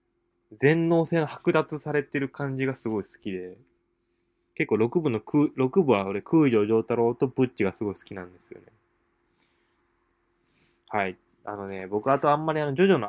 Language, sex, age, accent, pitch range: Japanese, male, 20-39, native, 100-135 Hz